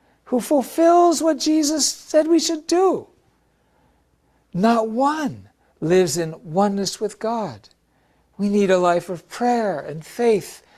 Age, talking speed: 60-79, 130 wpm